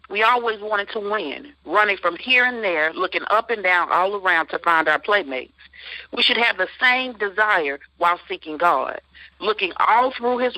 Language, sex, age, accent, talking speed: English, female, 50-69, American, 185 wpm